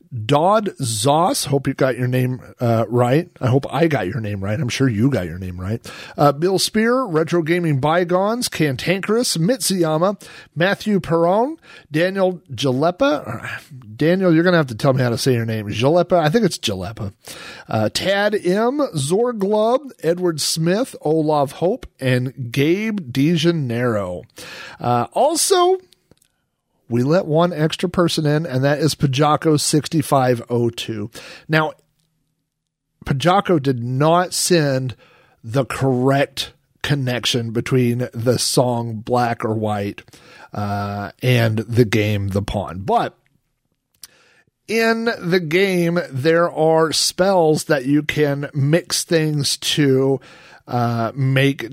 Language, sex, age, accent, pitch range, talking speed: English, male, 40-59, American, 125-170 Hz, 130 wpm